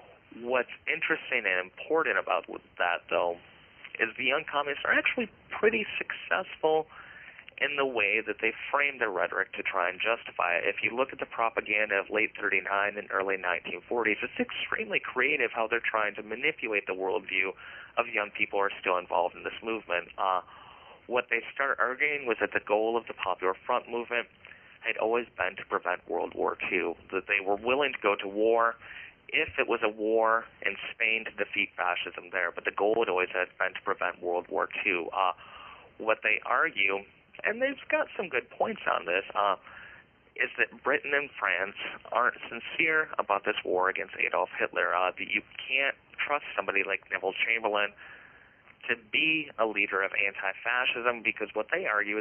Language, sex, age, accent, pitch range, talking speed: English, male, 30-49, American, 100-140 Hz, 180 wpm